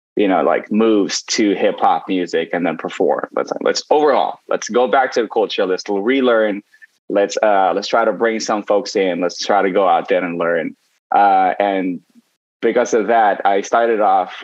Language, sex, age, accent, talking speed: English, male, 20-39, American, 195 wpm